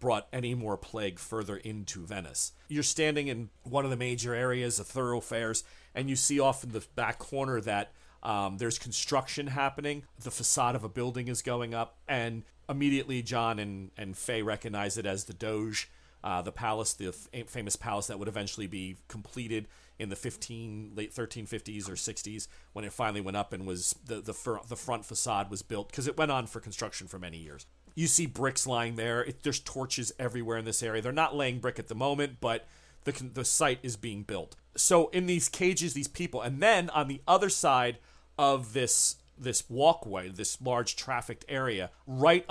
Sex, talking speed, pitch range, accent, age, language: male, 195 wpm, 105-135 Hz, American, 40-59, English